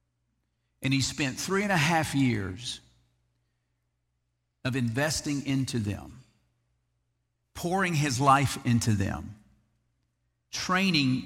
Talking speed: 95 wpm